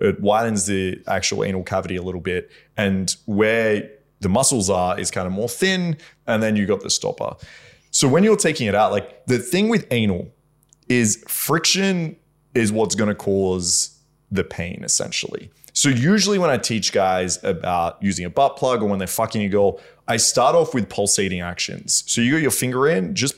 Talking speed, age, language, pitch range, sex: 190 wpm, 20-39, English, 100-145 Hz, male